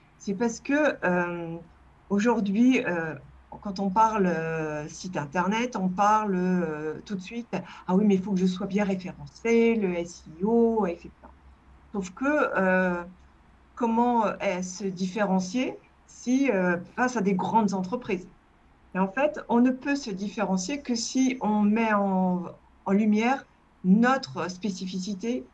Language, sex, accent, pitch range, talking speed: French, female, French, 180-230 Hz, 150 wpm